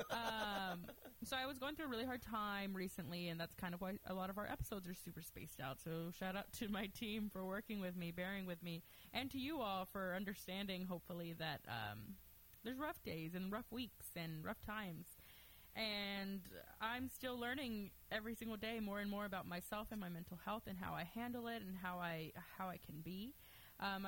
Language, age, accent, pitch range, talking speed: English, 20-39, American, 185-230 Hz, 210 wpm